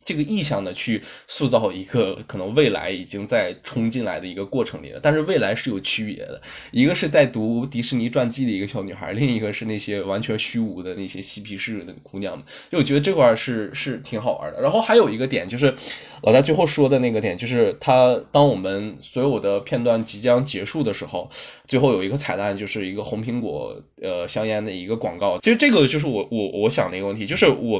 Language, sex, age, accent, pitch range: Chinese, male, 20-39, native, 100-130 Hz